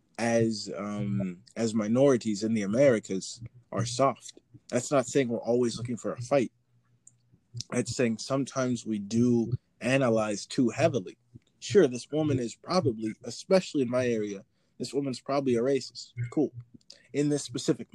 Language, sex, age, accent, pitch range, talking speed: English, male, 20-39, American, 110-130 Hz, 145 wpm